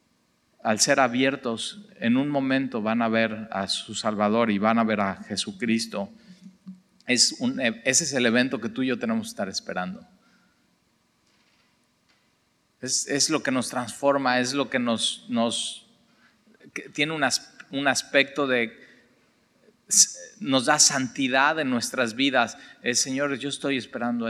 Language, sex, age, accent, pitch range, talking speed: Spanish, male, 40-59, Mexican, 120-150 Hz, 150 wpm